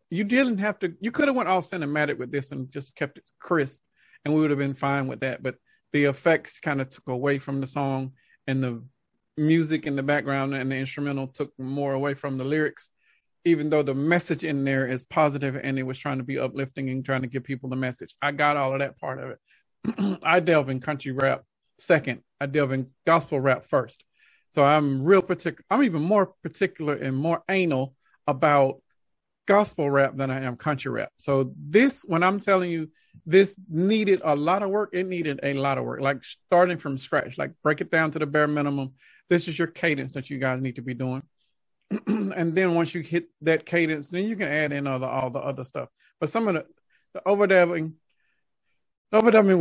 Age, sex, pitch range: 40-59, male, 135-175 Hz